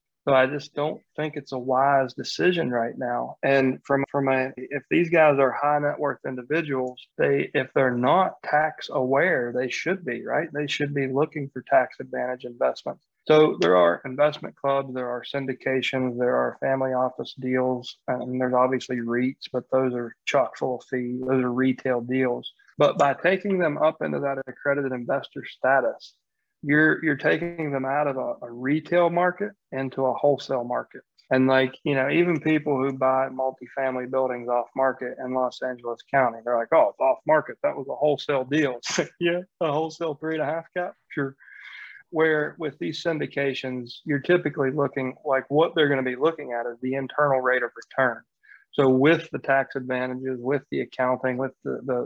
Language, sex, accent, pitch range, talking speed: English, male, American, 125-150 Hz, 185 wpm